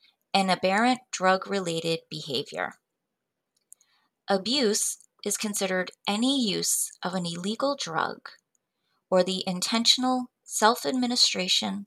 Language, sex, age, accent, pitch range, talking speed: English, female, 30-49, American, 170-220 Hz, 85 wpm